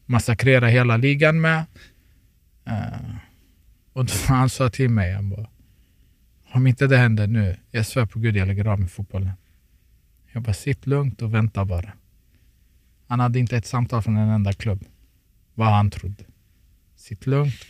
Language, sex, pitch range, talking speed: Swedish, male, 90-120 Hz, 155 wpm